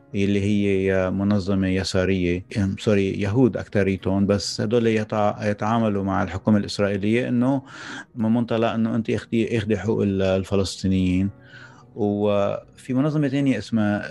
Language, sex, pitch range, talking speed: English, male, 95-115 Hz, 110 wpm